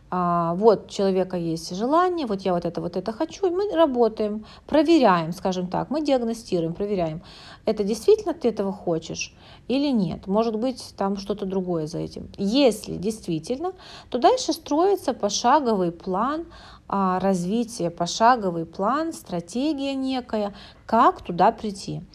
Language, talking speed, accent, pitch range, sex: Russian, 135 wpm, native, 190-265 Hz, female